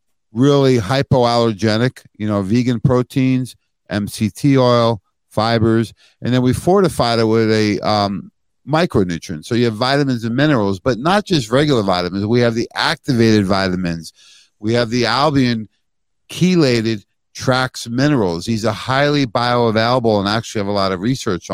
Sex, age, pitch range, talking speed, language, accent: male, 50-69, 105-130 Hz, 145 wpm, English, American